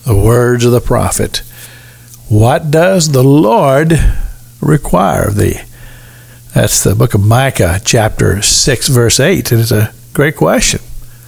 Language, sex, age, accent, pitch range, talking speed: English, male, 60-79, American, 115-145 Hz, 135 wpm